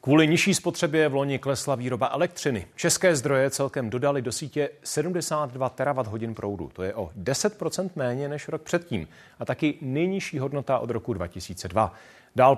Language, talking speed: Czech, 160 wpm